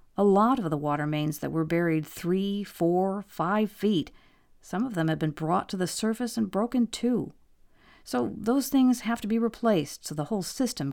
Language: English